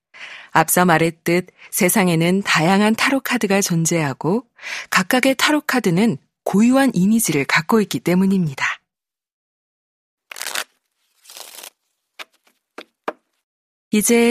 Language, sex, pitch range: Korean, female, 160-230 Hz